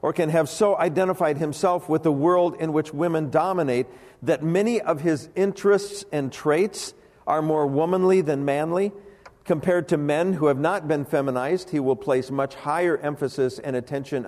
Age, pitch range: 50-69, 135-175 Hz